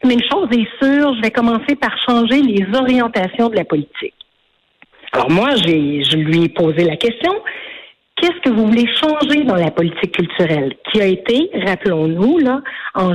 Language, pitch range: French, 190-260 Hz